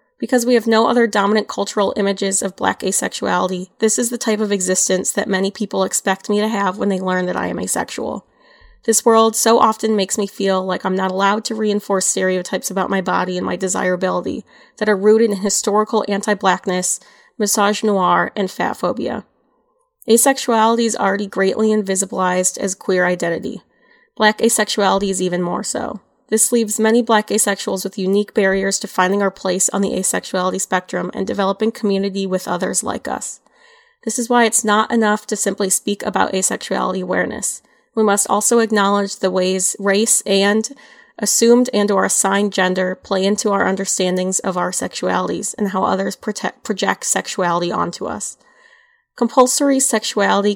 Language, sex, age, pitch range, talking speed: English, female, 20-39, 190-220 Hz, 165 wpm